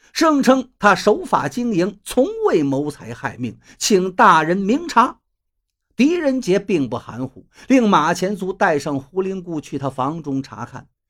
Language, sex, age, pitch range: Chinese, male, 50-69, 150-230 Hz